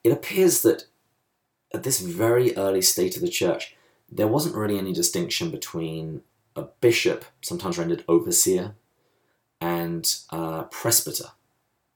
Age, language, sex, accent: 30-49, English, male, British